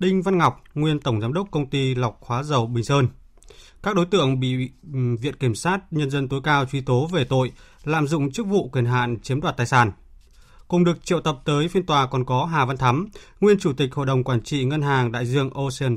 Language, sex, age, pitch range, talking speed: Vietnamese, male, 20-39, 130-165 Hz, 235 wpm